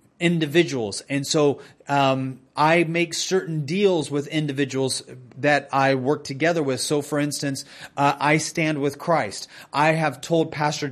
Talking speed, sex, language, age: 150 wpm, male, English, 30-49